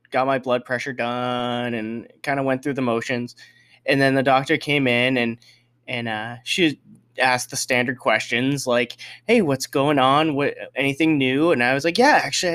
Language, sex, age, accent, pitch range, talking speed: English, male, 20-39, American, 120-140 Hz, 190 wpm